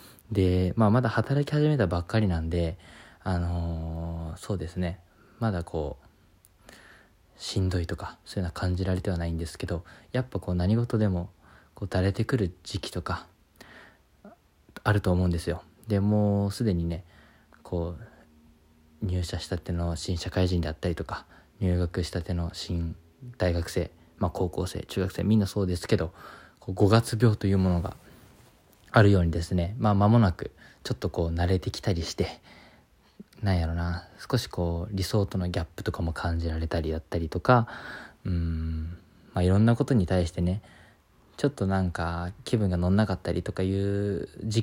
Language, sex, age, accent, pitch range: Japanese, male, 20-39, native, 85-105 Hz